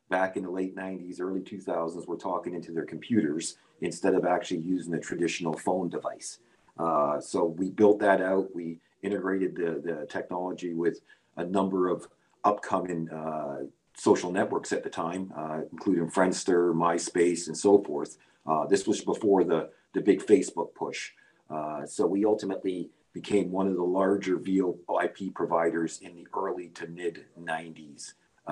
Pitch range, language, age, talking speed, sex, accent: 85-100 Hz, English, 40-59, 160 wpm, male, American